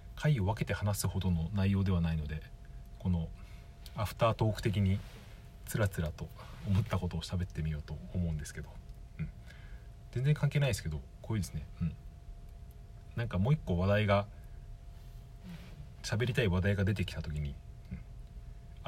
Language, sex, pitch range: Japanese, male, 85-115 Hz